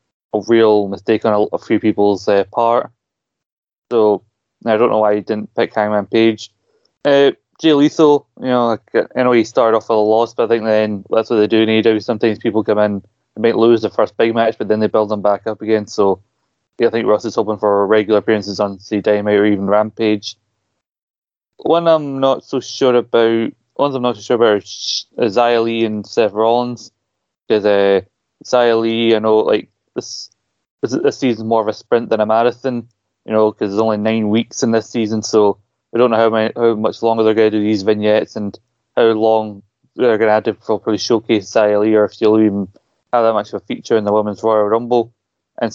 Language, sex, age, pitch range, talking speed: English, male, 20-39, 105-115 Hz, 215 wpm